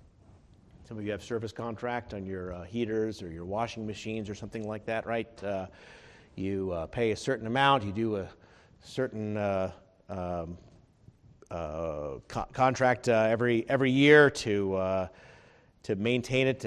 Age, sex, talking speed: 40-59, male, 160 wpm